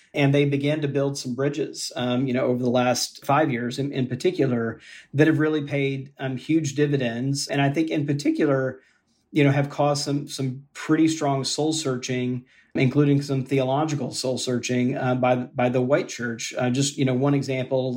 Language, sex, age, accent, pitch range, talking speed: English, male, 40-59, American, 125-140 Hz, 190 wpm